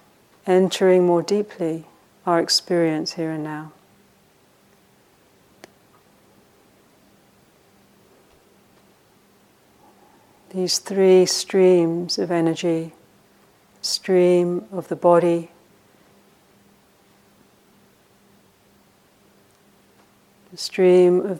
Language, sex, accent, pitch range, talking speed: English, female, British, 170-185 Hz, 55 wpm